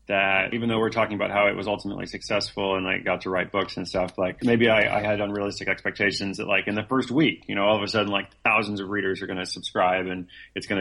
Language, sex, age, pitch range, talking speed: English, male, 30-49, 95-115 Hz, 280 wpm